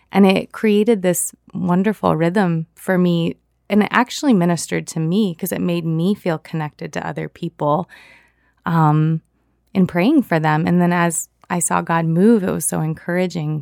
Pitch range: 160-205 Hz